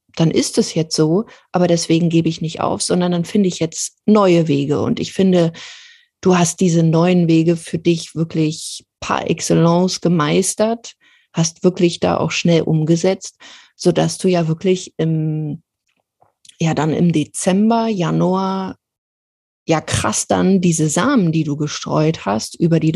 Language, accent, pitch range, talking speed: German, German, 160-185 Hz, 150 wpm